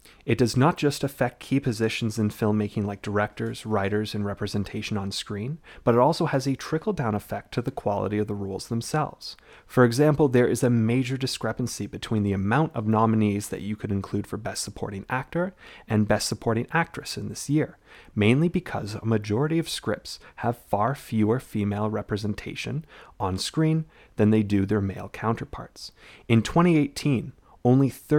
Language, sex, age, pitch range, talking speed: English, male, 30-49, 105-140 Hz, 170 wpm